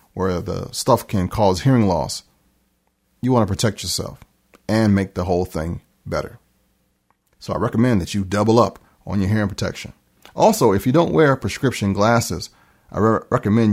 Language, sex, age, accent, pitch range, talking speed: English, male, 40-59, American, 75-115 Hz, 170 wpm